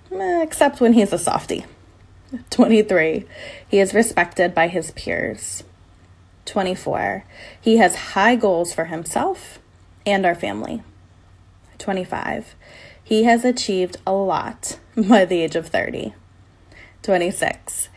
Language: English